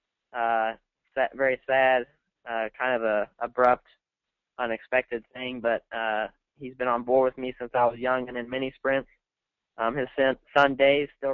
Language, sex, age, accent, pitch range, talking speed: English, male, 20-39, American, 120-135 Hz, 165 wpm